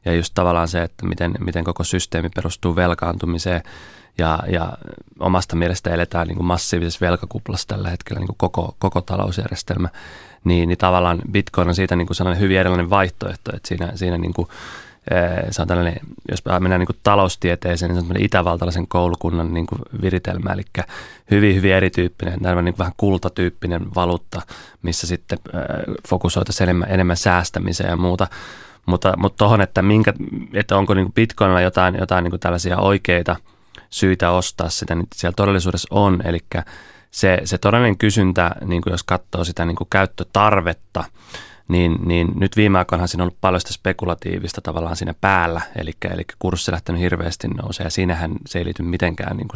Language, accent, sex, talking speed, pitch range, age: Finnish, native, male, 150 wpm, 85-100 Hz, 30-49